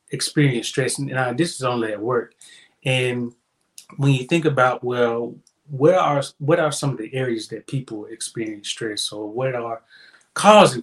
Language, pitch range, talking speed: English, 115-150 Hz, 165 wpm